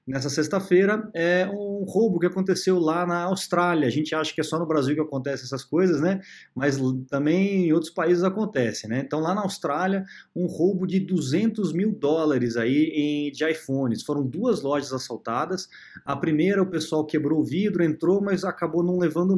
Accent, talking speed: Brazilian, 185 wpm